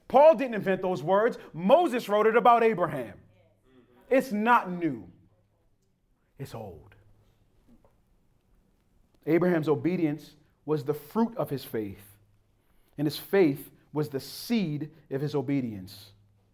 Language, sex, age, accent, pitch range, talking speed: English, male, 30-49, American, 105-160 Hz, 115 wpm